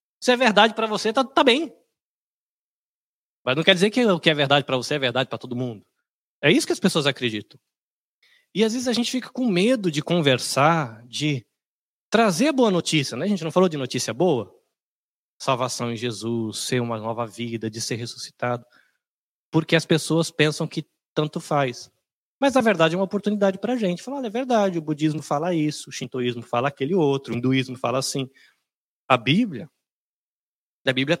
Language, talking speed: Portuguese, 190 wpm